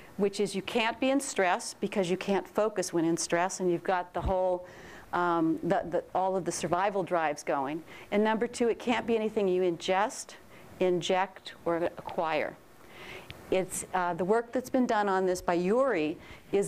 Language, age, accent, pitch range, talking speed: English, 40-59, American, 180-225 Hz, 180 wpm